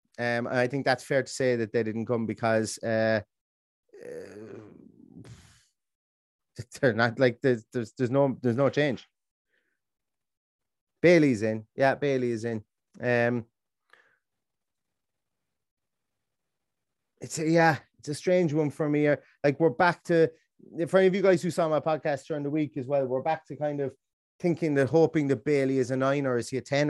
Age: 30-49